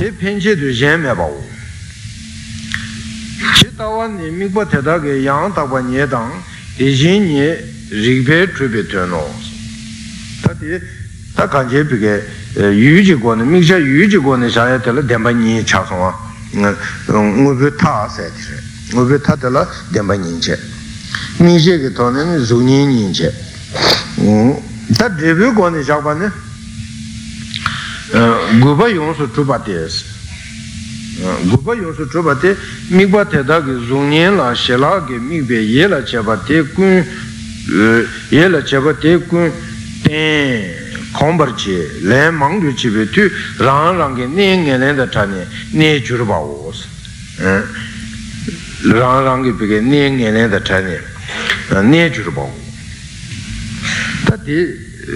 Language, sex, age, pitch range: Italian, male, 60-79, 110-150 Hz